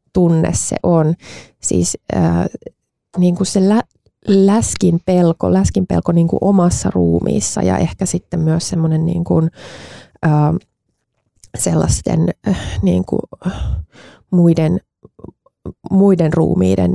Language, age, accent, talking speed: Finnish, 20-39, native, 90 wpm